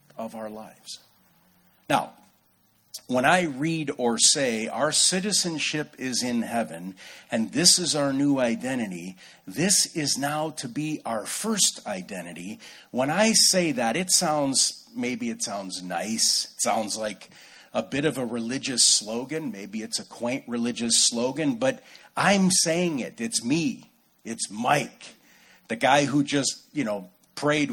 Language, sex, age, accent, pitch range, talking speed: English, male, 50-69, American, 115-180 Hz, 145 wpm